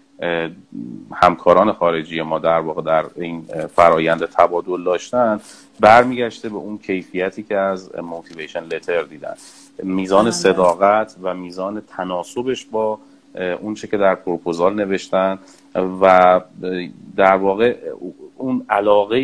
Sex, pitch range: male, 90-120 Hz